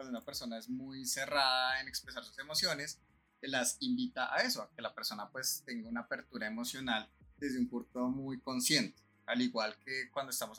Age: 30-49